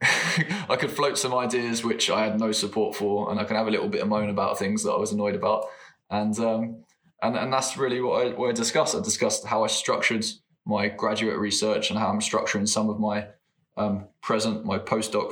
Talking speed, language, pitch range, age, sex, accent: 225 wpm, English, 105-115 Hz, 20-39, male, British